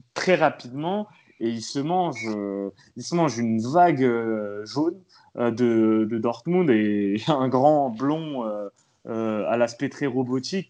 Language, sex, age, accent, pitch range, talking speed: French, male, 30-49, French, 110-145 Hz, 175 wpm